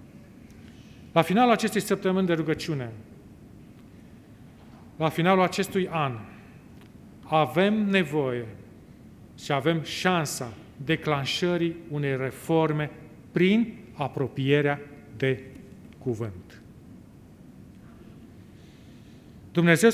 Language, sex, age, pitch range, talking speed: Romanian, male, 40-59, 130-190 Hz, 70 wpm